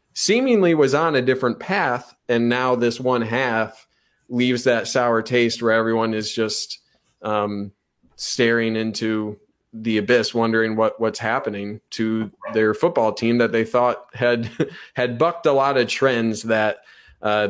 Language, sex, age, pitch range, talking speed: English, male, 20-39, 110-135 Hz, 150 wpm